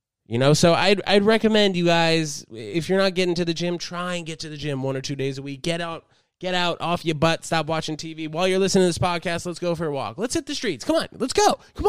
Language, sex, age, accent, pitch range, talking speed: English, male, 20-39, American, 105-160 Hz, 290 wpm